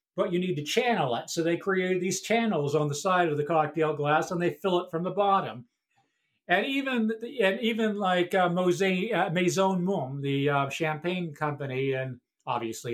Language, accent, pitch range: English, American, 155-190 Hz